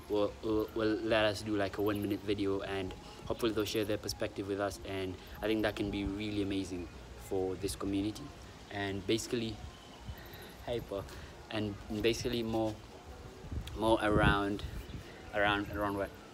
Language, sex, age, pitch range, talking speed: English, male, 20-39, 95-105 Hz, 150 wpm